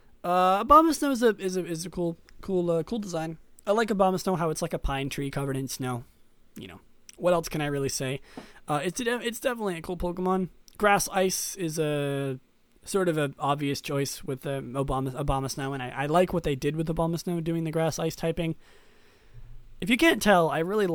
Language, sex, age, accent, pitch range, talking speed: English, male, 20-39, American, 130-185 Hz, 210 wpm